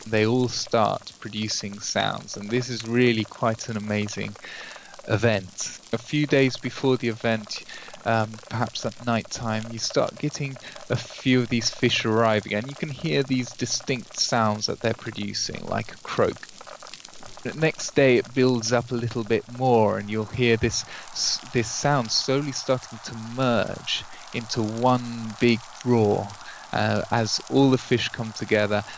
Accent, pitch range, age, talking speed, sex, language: British, 110-125 Hz, 20-39, 160 wpm, male, English